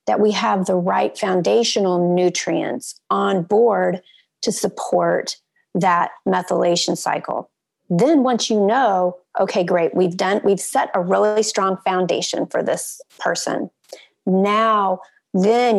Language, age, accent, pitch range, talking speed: English, 40-59, American, 190-235 Hz, 125 wpm